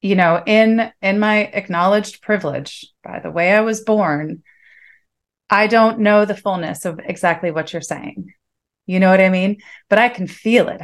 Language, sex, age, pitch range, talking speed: English, female, 30-49, 170-215 Hz, 185 wpm